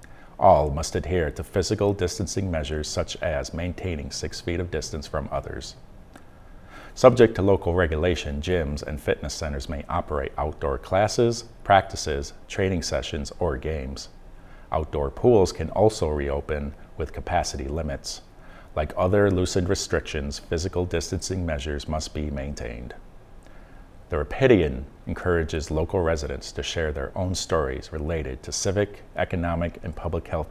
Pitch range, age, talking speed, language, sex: 75-90 Hz, 50-69, 135 wpm, English, male